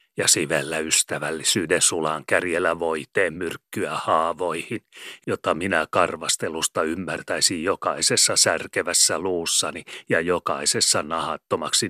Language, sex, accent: Finnish, male, native